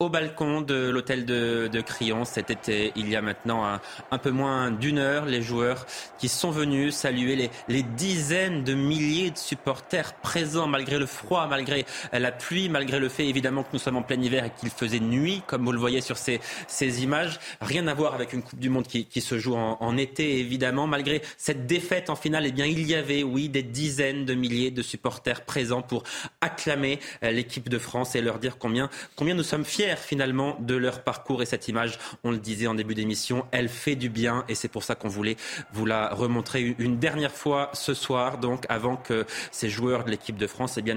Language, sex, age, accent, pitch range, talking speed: French, male, 30-49, French, 115-140 Hz, 220 wpm